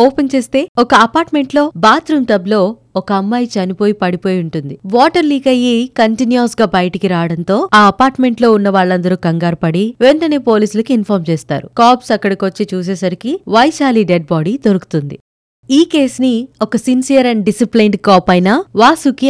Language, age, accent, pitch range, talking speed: Telugu, 20-39, native, 195-250 Hz, 135 wpm